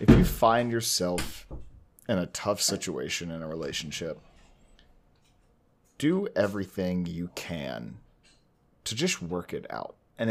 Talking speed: 120 wpm